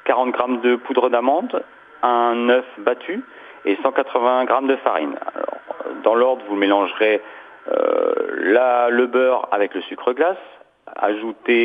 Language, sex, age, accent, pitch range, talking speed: French, male, 40-59, French, 100-140 Hz, 140 wpm